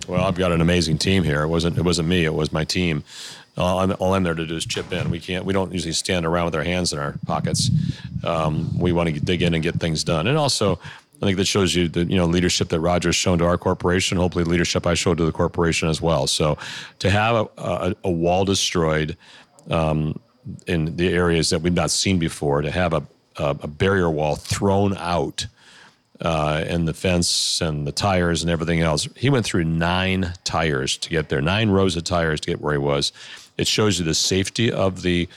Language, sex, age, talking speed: English, male, 40-59, 230 wpm